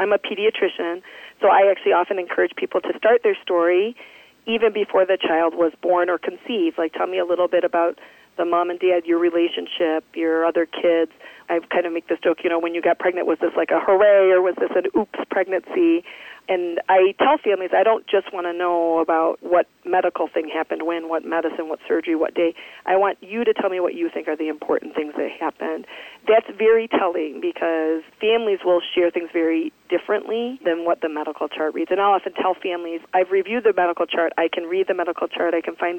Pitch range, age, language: 165-200 Hz, 40-59, English